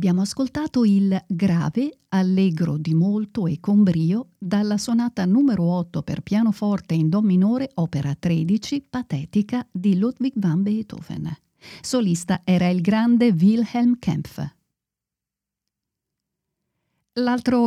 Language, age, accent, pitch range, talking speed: Italian, 50-69, native, 175-235 Hz, 110 wpm